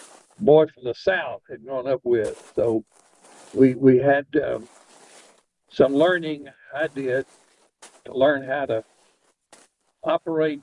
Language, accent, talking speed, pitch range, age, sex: English, American, 125 wpm, 130-160 Hz, 60-79, male